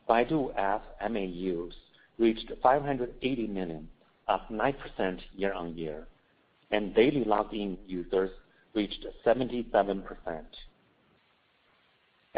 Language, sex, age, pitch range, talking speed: English, male, 50-69, 100-140 Hz, 75 wpm